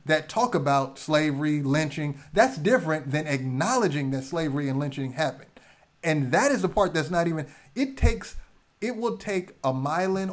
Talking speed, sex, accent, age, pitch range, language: 170 wpm, male, American, 30-49, 150-200 Hz, English